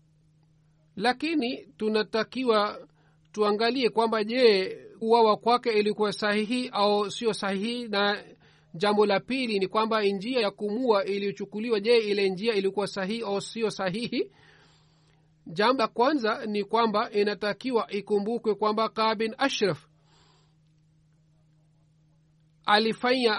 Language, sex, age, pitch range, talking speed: Swahili, male, 40-59, 155-225 Hz, 105 wpm